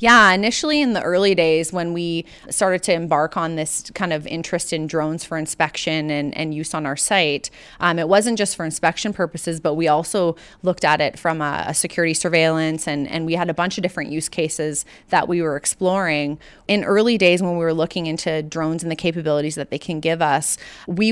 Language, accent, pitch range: English, American, 155-180 Hz